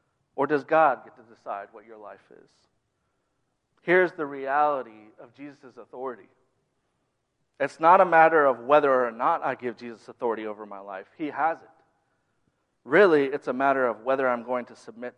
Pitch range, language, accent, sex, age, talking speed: 125-170 Hz, English, American, male, 40-59, 175 wpm